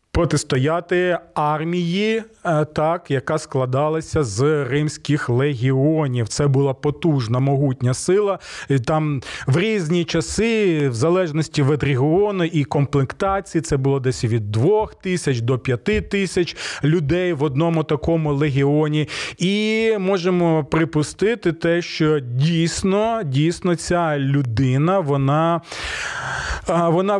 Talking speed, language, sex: 105 wpm, Ukrainian, male